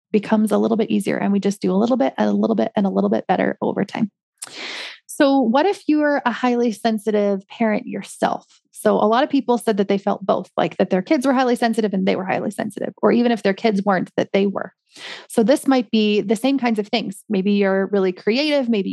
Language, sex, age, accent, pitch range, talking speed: English, female, 30-49, American, 195-235 Hz, 245 wpm